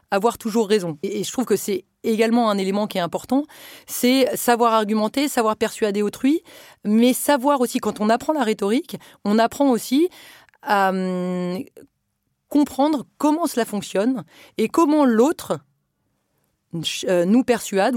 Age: 30-49